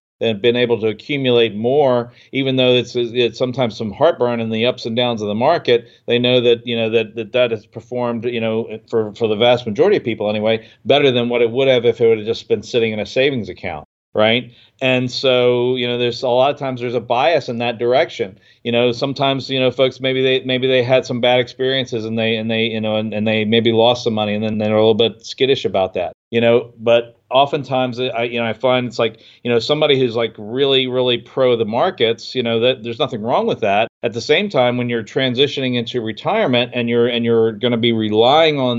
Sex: male